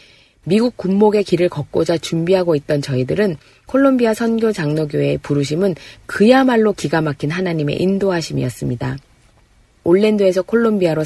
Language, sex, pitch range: Korean, female, 145-215 Hz